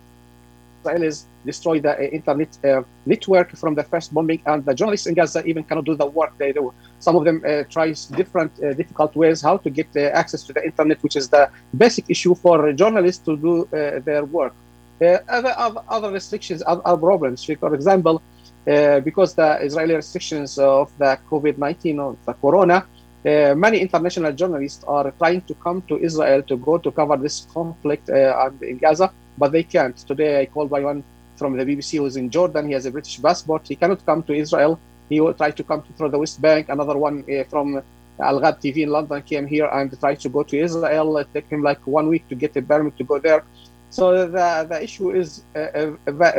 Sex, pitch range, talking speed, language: male, 140-170 Hz, 210 wpm, English